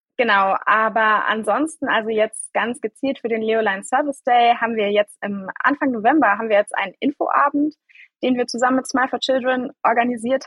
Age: 20-39